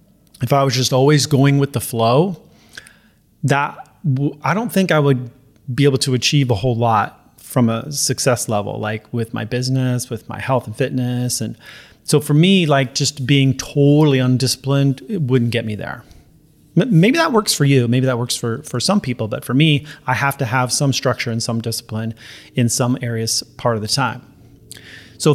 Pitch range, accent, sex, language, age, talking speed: 125-155 Hz, American, male, English, 30-49, 190 wpm